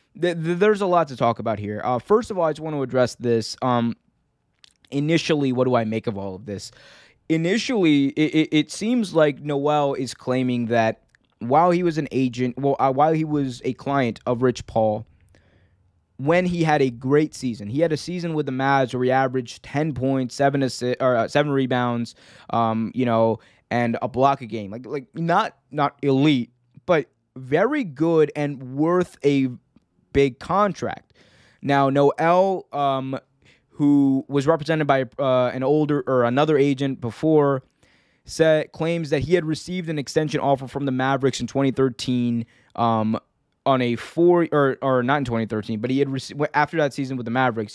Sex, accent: male, American